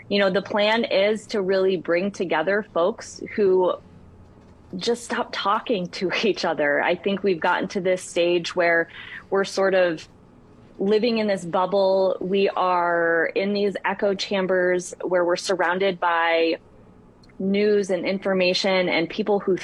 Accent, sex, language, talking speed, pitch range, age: American, female, English, 145 wpm, 170-200 Hz, 20-39